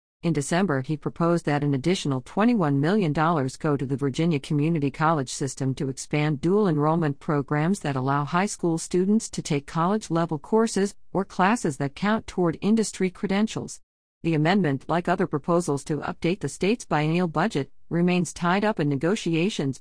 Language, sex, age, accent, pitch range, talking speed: English, female, 50-69, American, 150-195 Hz, 165 wpm